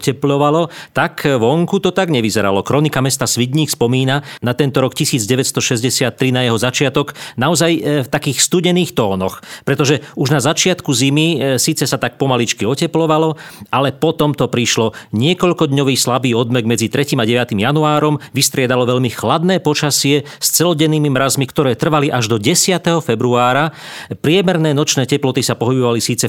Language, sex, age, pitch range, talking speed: Slovak, male, 40-59, 120-150 Hz, 140 wpm